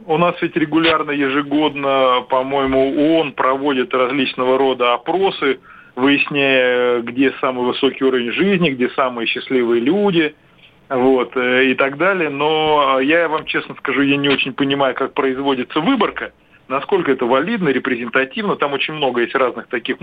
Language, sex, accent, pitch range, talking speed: Russian, male, native, 130-160 Hz, 140 wpm